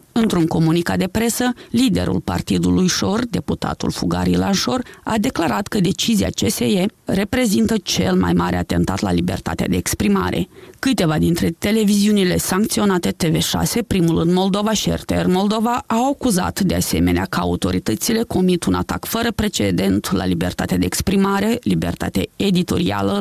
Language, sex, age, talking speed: Romanian, female, 30-49, 135 wpm